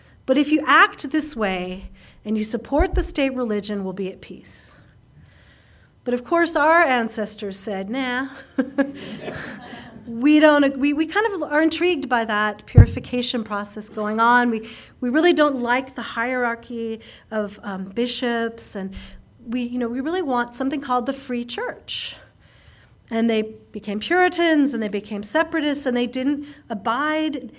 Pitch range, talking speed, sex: 220-290 Hz, 155 wpm, female